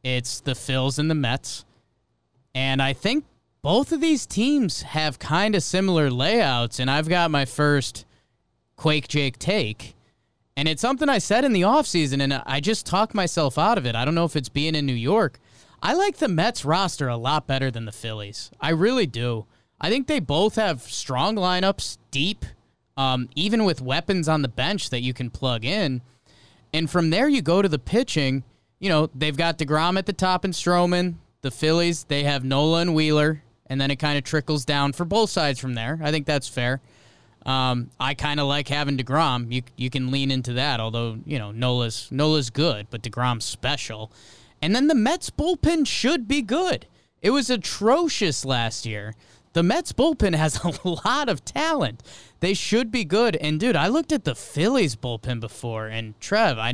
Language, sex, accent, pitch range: English, male, American, 125-190 Hz